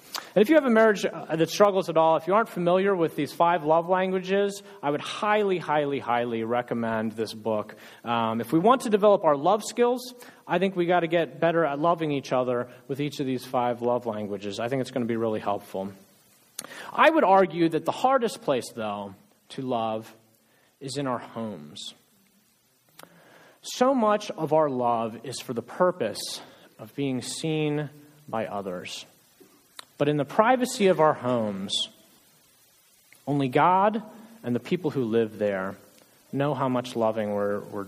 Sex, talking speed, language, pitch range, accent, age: male, 175 wpm, English, 115-175 Hz, American, 30-49